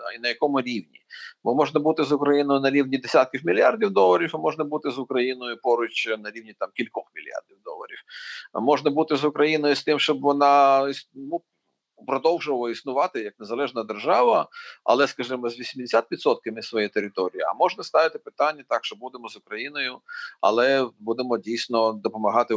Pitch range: 115-150 Hz